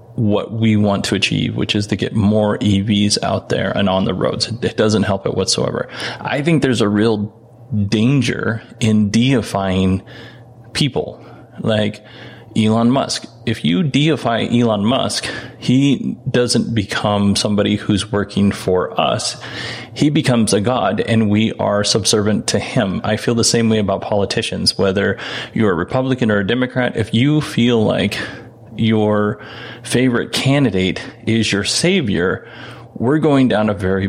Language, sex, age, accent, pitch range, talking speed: English, male, 20-39, American, 105-125 Hz, 150 wpm